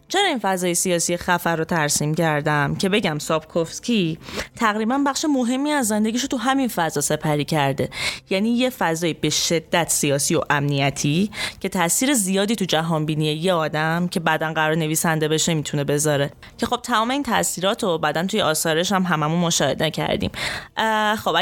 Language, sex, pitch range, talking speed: Persian, female, 155-210 Hz, 160 wpm